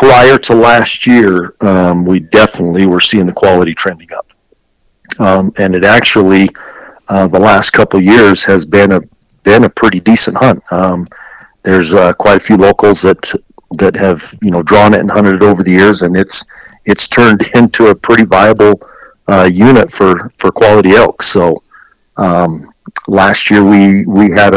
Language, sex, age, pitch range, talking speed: English, male, 50-69, 90-105 Hz, 175 wpm